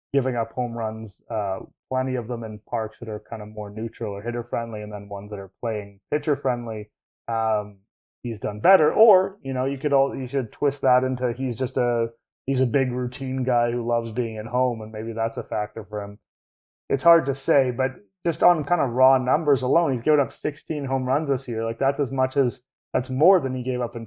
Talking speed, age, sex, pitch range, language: 235 wpm, 20-39, male, 110-135 Hz, English